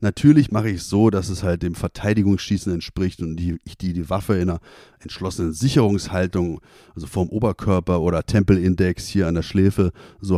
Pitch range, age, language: 90-115 Hz, 30-49, German